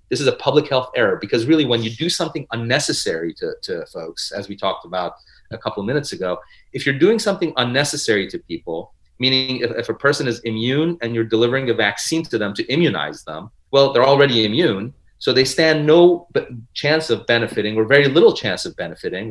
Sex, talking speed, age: male, 205 wpm, 30-49